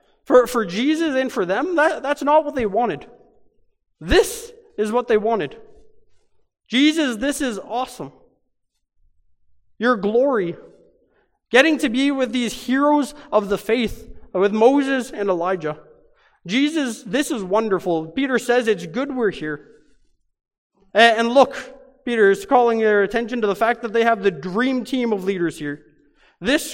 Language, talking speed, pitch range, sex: English, 150 wpm, 200-270 Hz, male